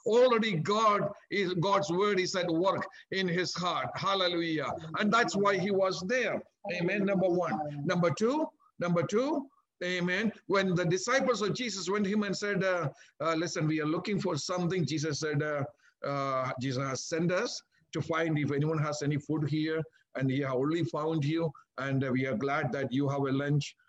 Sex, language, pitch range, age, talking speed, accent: male, English, 135-180 Hz, 50-69, 190 wpm, Indian